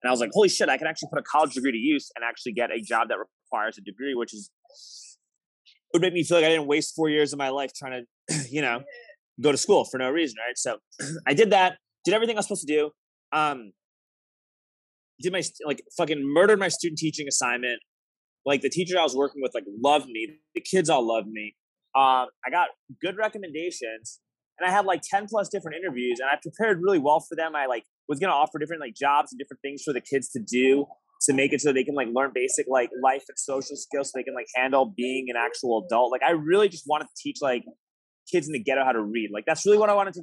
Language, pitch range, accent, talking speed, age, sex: English, 130-170 Hz, American, 250 wpm, 20-39, male